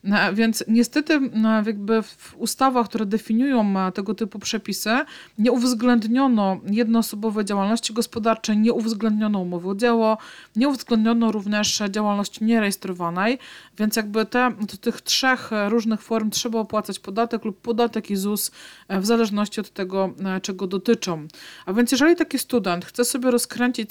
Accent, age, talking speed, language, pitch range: native, 40-59, 135 wpm, Polish, 205-240 Hz